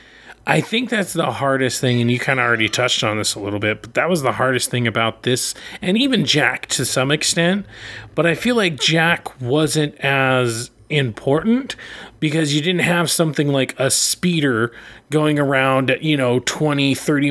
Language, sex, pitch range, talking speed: English, male, 135-190 Hz, 185 wpm